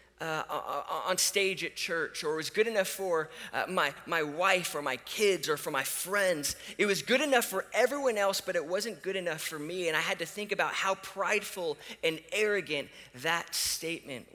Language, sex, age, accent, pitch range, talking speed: English, male, 30-49, American, 135-195 Hz, 200 wpm